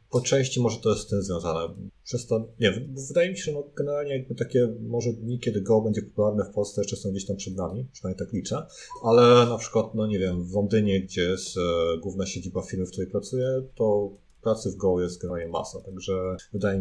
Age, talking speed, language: 40-59, 215 wpm, Polish